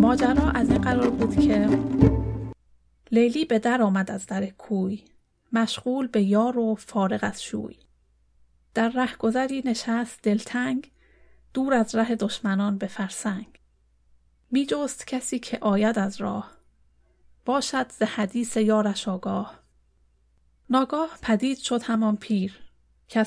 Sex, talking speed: female, 125 wpm